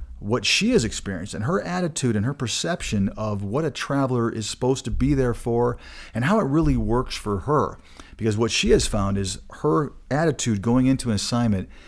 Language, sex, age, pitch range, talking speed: English, male, 40-59, 100-125 Hz, 195 wpm